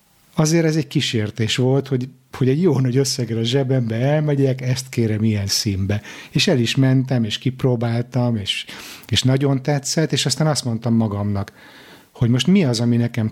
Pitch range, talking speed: 105-130 Hz, 175 wpm